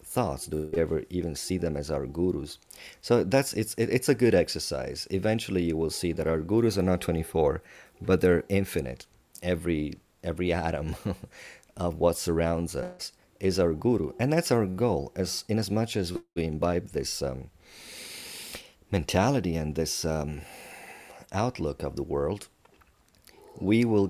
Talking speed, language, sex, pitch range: 155 wpm, English, male, 75-95 Hz